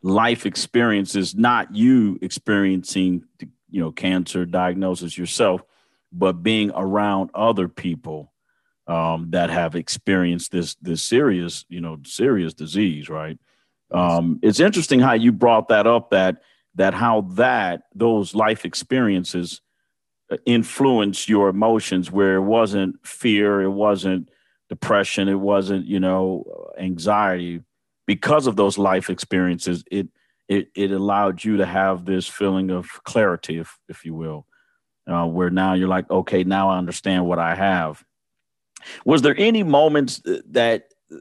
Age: 50-69